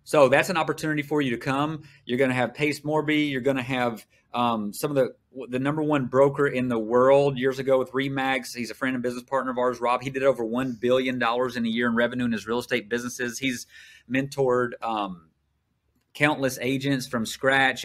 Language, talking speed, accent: English, 215 wpm, American